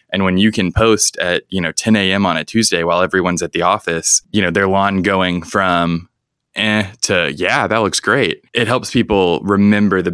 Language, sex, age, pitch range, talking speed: English, male, 20-39, 90-105 Hz, 205 wpm